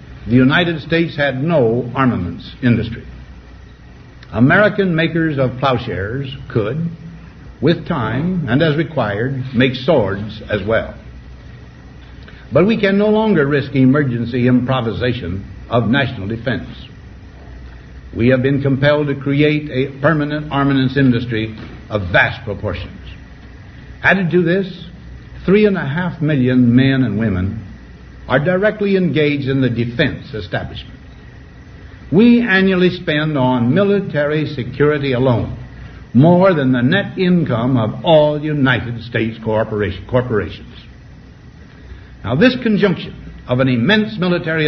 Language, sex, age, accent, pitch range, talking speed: English, male, 60-79, American, 115-165 Hz, 120 wpm